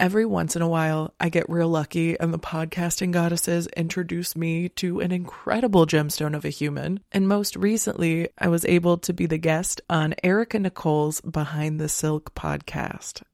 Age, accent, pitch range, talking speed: 20-39, American, 155-185 Hz, 175 wpm